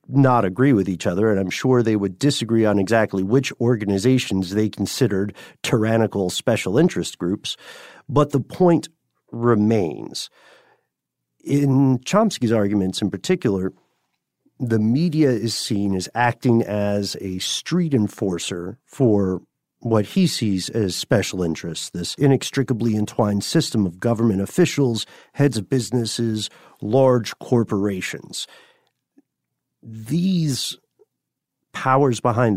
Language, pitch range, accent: English, 95-130 Hz, American